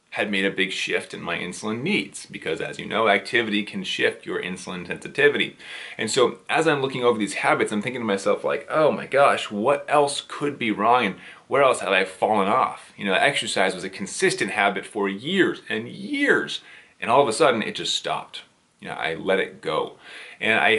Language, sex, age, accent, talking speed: English, male, 30-49, American, 215 wpm